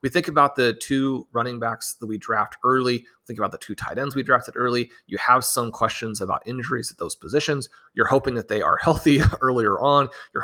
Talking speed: 215 wpm